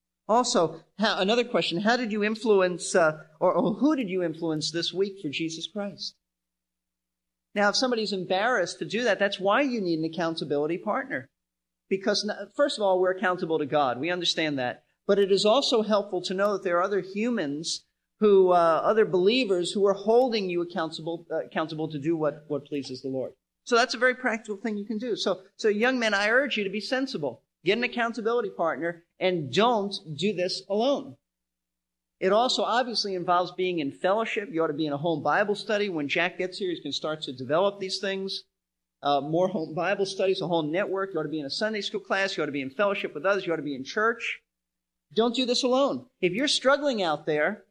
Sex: male